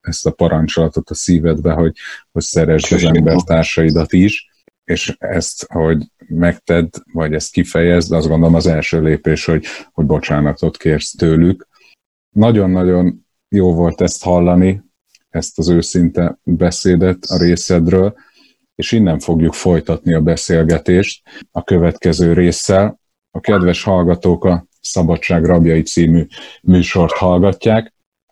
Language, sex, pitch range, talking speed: Hungarian, male, 80-90 Hz, 125 wpm